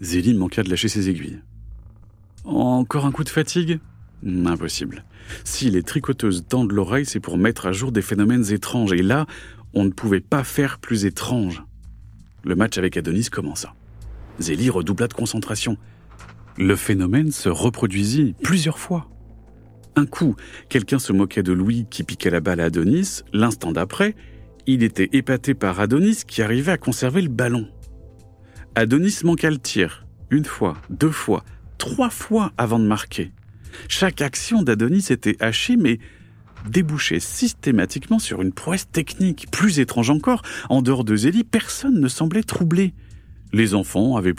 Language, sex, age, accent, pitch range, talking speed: French, male, 40-59, French, 95-135 Hz, 155 wpm